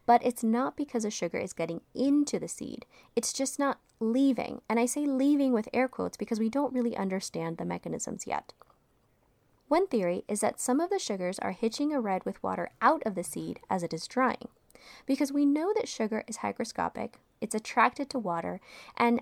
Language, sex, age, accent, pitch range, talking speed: English, female, 20-39, American, 190-260 Hz, 200 wpm